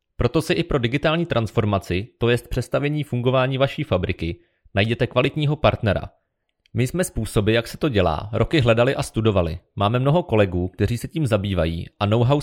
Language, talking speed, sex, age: Czech, 170 wpm, male, 30-49